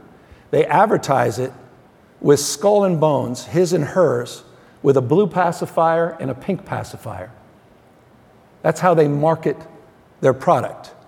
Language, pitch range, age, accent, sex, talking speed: English, 130-155 Hz, 50-69, American, male, 130 wpm